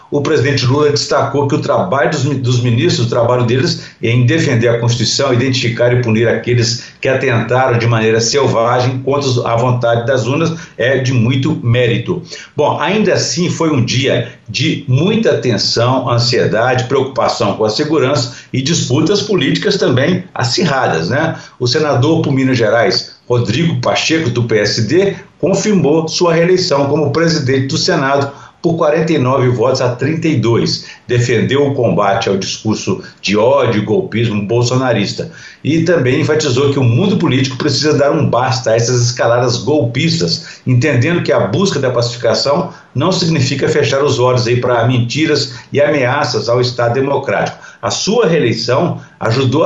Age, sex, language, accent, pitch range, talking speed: 60-79, male, Portuguese, Brazilian, 120-150 Hz, 150 wpm